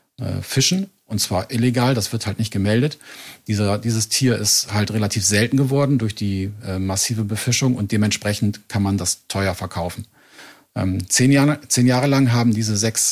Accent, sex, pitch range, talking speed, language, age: German, male, 105-125 Hz, 175 wpm, German, 40-59